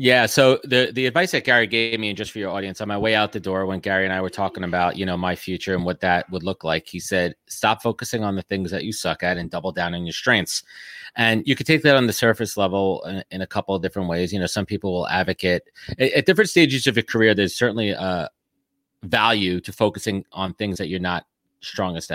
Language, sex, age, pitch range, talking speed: English, male, 30-49, 95-115 Hz, 255 wpm